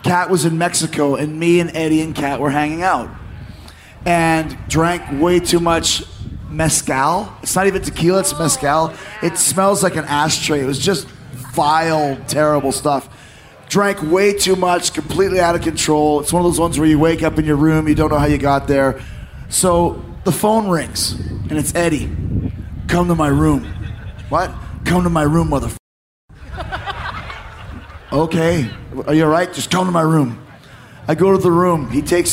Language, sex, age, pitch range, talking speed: English, male, 30-49, 140-185 Hz, 180 wpm